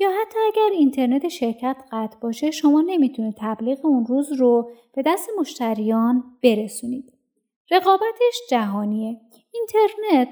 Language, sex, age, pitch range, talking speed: Persian, female, 30-49, 220-310 Hz, 115 wpm